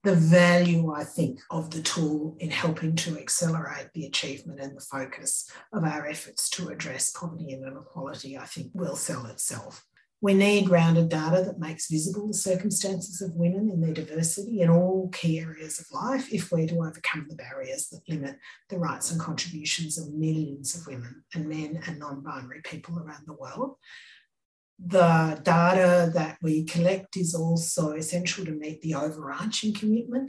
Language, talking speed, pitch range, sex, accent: English, 170 wpm, 155-180 Hz, female, Australian